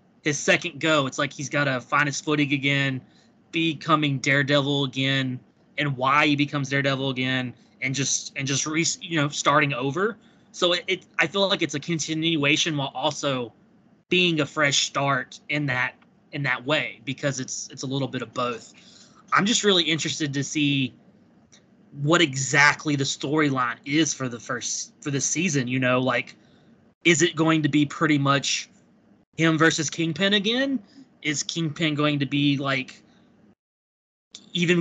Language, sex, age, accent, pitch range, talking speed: English, male, 20-39, American, 140-170 Hz, 165 wpm